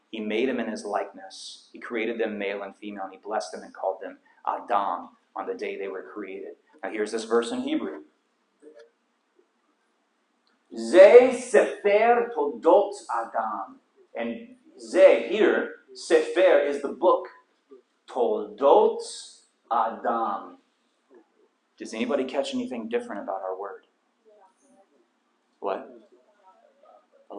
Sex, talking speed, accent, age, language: male, 120 wpm, American, 30-49, English